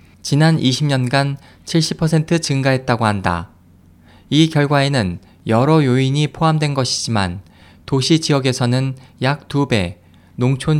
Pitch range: 100-150 Hz